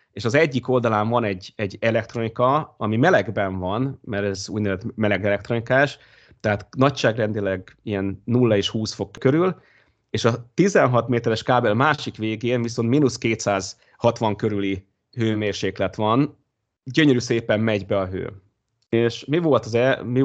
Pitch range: 105-125 Hz